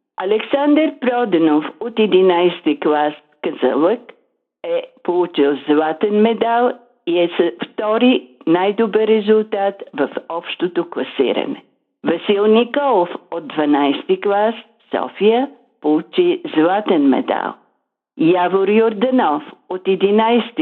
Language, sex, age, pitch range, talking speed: Bulgarian, female, 50-69, 165-245 Hz, 85 wpm